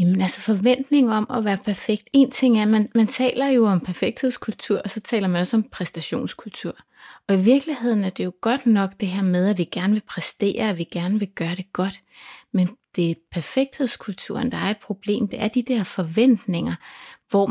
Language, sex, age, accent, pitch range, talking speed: Danish, female, 30-49, native, 180-230 Hz, 210 wpm